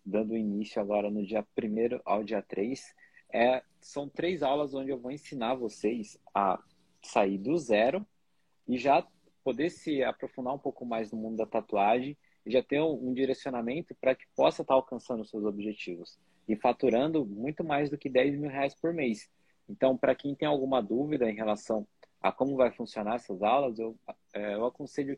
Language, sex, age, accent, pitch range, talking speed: Portuguese, male, 20-39, Brazilian, 110-140 Hz, 185 wpm